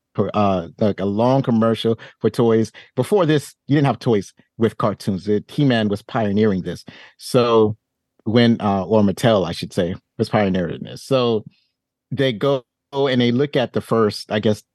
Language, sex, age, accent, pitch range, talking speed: English, male, 30-49, American, 105-125 Hz, 175 wpm